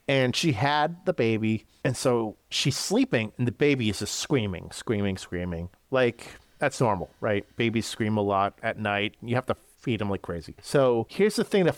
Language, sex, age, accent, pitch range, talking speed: English, male, 30-49, American, 110-160 Hz, 200 wpm